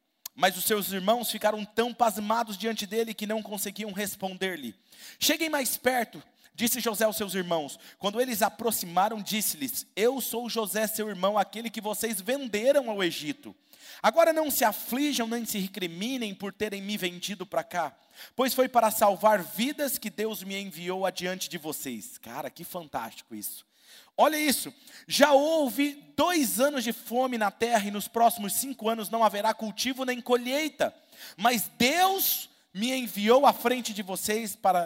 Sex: male